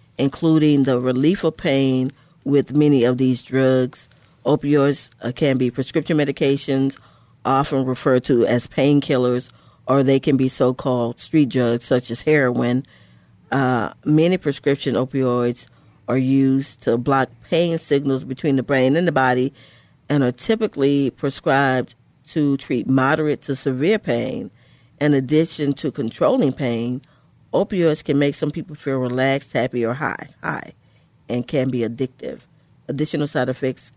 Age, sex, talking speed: 40-59, female, 140 wpm